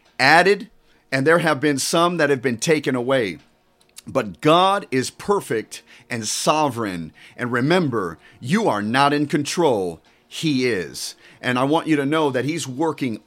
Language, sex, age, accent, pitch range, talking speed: English, male, 40-59, American, 120-155 Hz, 160 wpm